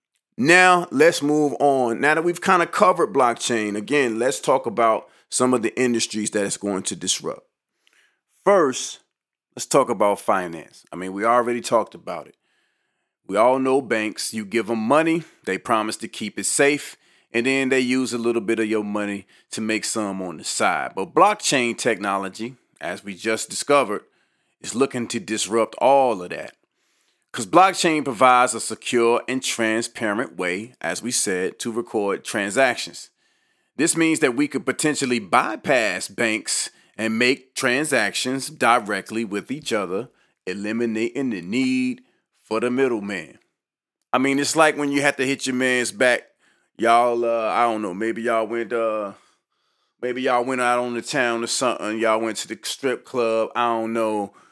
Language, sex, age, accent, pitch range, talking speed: English, male, 30-49, American, 110-135 Hz, 170 wpm